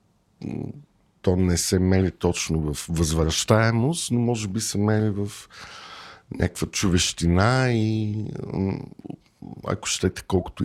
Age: 50-69